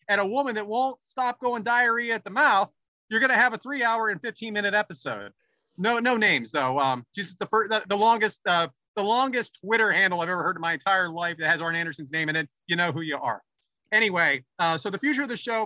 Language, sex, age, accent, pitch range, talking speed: English, male, 30-49, American, 175-225 Hz, 240 wpm